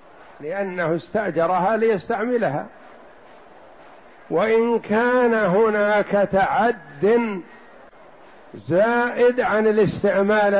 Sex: male